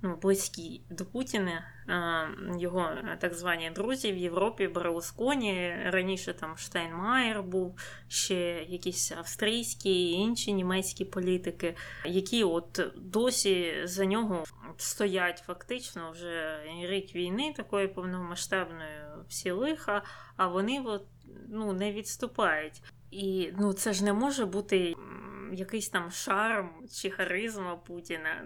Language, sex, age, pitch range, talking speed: Ukrainian, female, 20-39, 175-200 Hz, 115 wpm